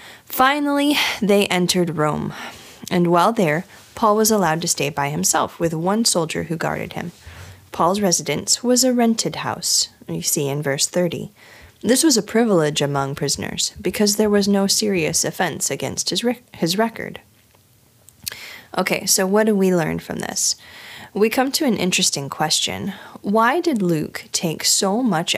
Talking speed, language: 155 wpm, English